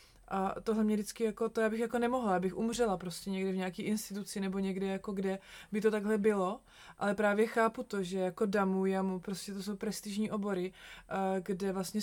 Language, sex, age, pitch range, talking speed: Czech, female, 20-39, 175-200 Hz, 205 wpm